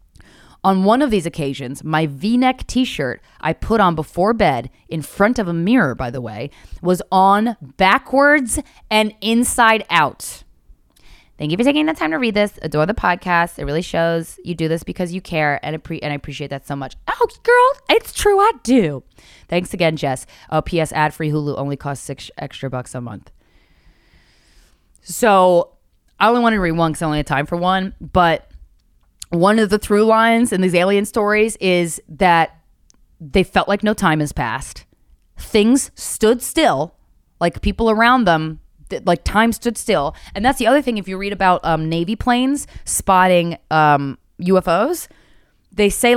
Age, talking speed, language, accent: 10-29, 175 wpm, English, American